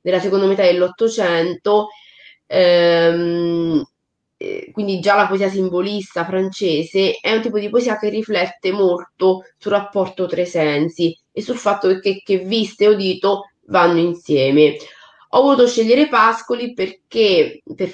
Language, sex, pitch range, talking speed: Italian, female, 170-210 Hz, 135 wpm